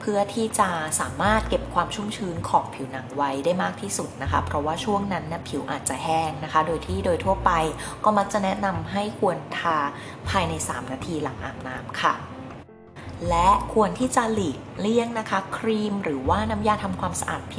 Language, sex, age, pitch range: Thai, female, 20-39, 150-205 Hz